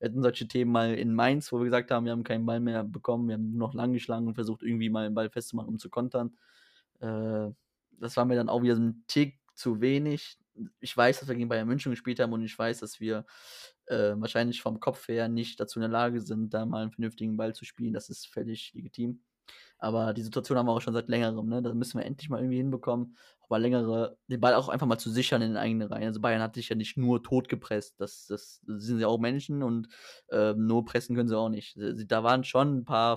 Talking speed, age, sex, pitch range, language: 250 wpm, 20-39, male, 110-125 Hz, German